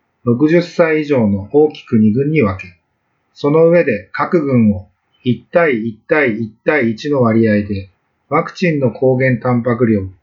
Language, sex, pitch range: Japanese, male, 110-155 Hz